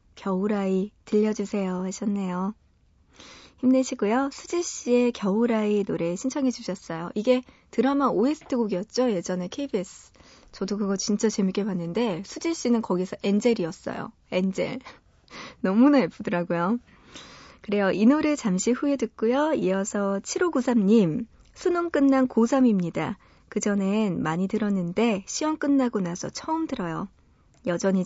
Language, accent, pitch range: Korean, native, 190-250 Hz